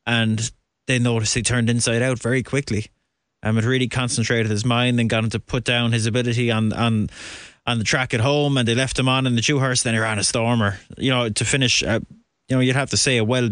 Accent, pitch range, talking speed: Irish, 110-125 Hz, 255 wpm